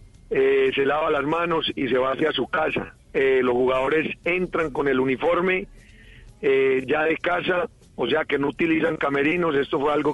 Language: Spanish